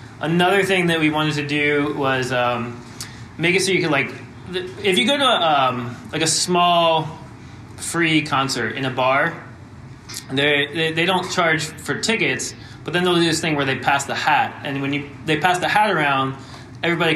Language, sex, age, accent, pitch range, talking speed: English, male, 20-39, American, 125-160 Hz, 200 wpm